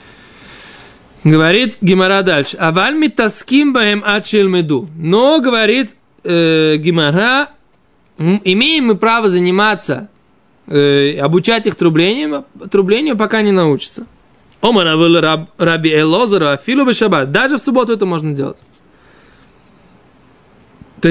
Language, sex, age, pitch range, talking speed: Russian, male, 20-39, 160-235 Hz, 100 wpm